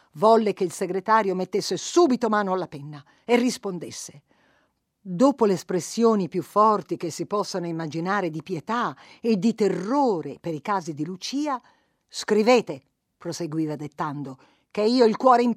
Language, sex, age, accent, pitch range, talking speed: Italian, female, 50-69, native, 180-270 Hz, 145 wpm